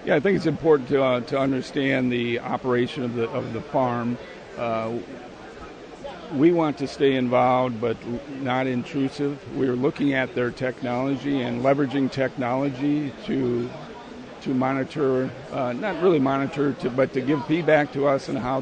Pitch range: 125-135 Hz